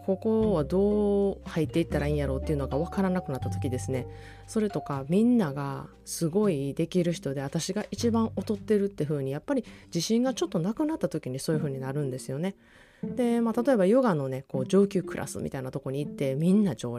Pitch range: 145-200 Hz